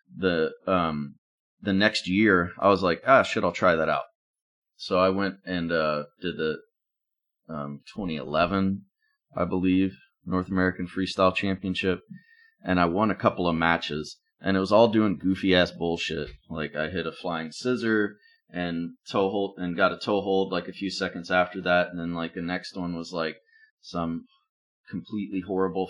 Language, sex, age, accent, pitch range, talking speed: English, male, 30-49, American, 85-110 Hz, 170 wpm